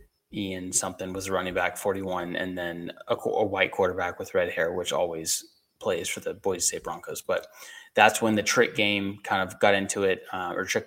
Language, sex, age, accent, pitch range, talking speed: English, male, 20-39, American, 95-120 Hz, 205 wpm